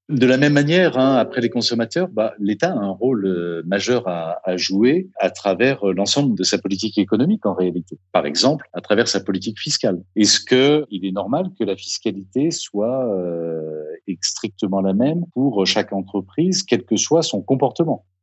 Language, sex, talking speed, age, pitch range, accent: French, male, 165 wpm, 40-59, 95-135 Hz, French